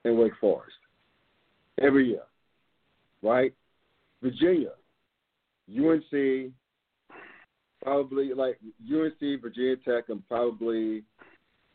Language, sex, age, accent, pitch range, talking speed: English, male, 50-69, American, 115-145 Hz, 75 wpm